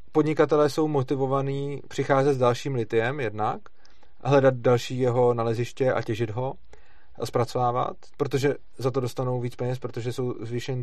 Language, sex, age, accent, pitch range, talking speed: Czech, male, 30-49, native, 125-145 Hz, 145 wpm